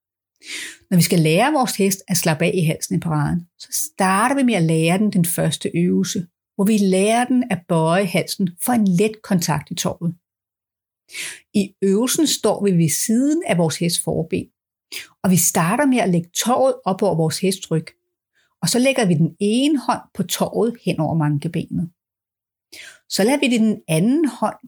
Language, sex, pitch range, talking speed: Danish, female, 165-225 Hz, 185 wpm